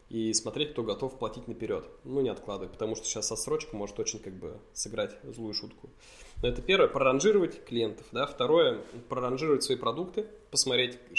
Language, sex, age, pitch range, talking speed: Russian, male, 20-39, 110-160 Hz, 165 wpm